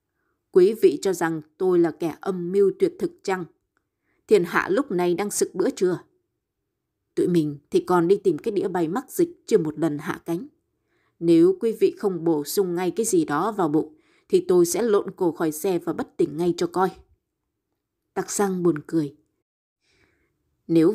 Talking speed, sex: 190 wpm, female